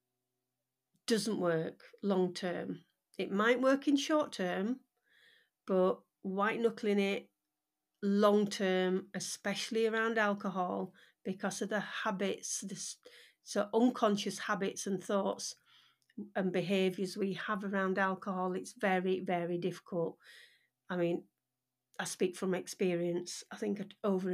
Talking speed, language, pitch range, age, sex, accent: 115 wpm, English, 185-215 Hz, 40-59, female, British